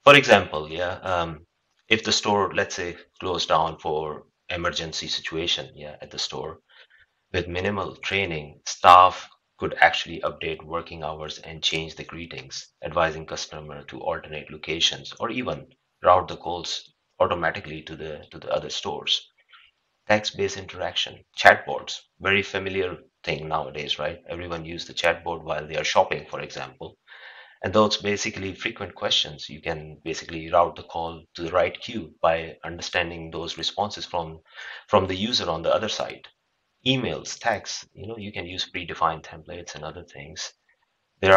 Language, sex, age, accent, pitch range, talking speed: English, male, 30-49, Indian, 80-90 Hz, 155 wpm